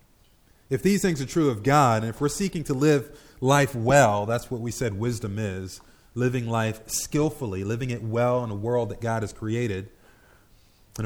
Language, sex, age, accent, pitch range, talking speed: English, male, 30-49, American, 105-150 Hz, 190 wpm